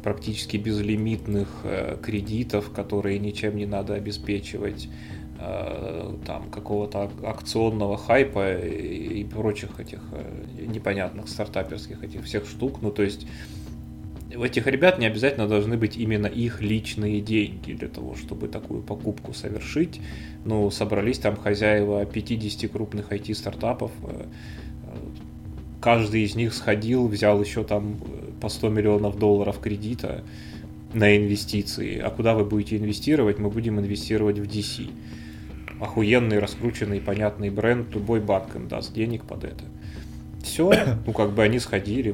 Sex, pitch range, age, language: male, 100-110 Hz, 20-39, Russian